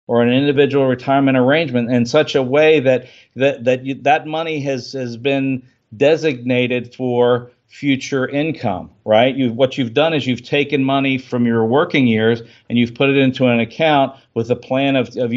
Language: English